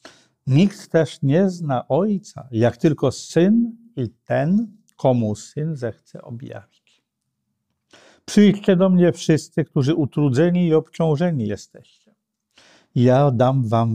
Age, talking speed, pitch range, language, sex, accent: 50-69, 110 wpm, 125-175 Hz, Polish, male, native